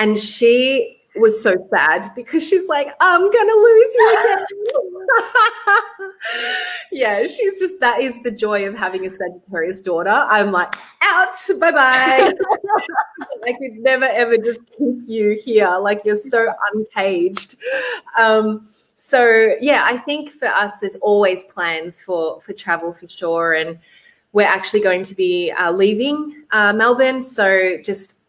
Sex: female